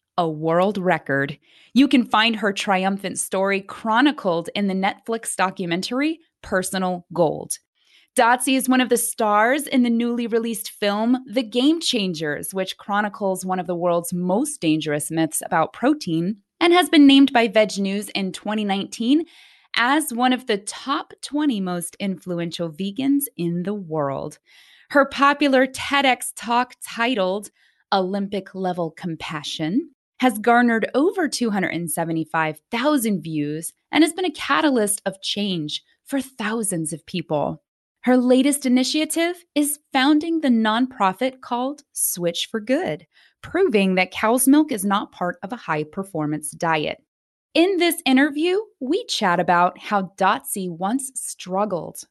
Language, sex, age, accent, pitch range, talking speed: English, female, 20-39, American, 175-260 Hz, 135 wpm